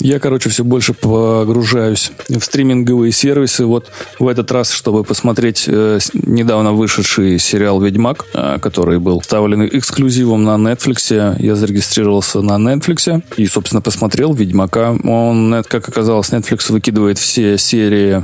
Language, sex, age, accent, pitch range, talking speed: Russian, male, 20-39, native, 105-125 Hz, 135 wpm